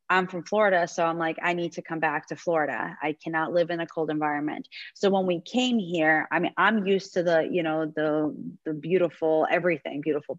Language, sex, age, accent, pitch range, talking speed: English, female, 30-49, American, 160-185 Hz, 220 wpm